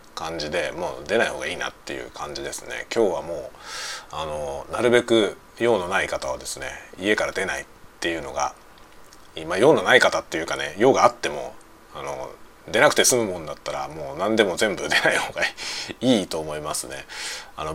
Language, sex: Japanese, male